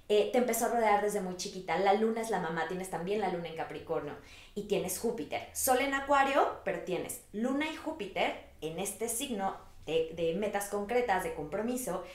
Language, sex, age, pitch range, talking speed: Spanish, female, 20-39, 170-230 Hz, 195 wpm